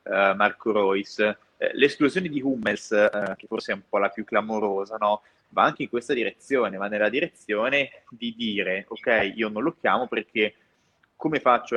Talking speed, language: 180 wpm, Italian